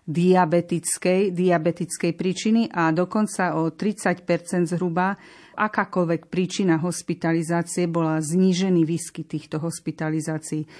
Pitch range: 170-205 Hz